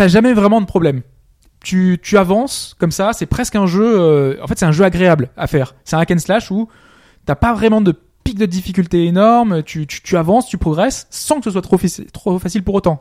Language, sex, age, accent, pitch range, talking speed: French, male, 20-39, French, 150-210 Hz, 245 wpm